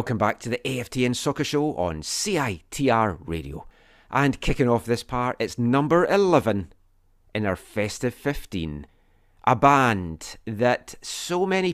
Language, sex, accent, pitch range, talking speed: English, male, British, 100-140 Hz, 140 wpm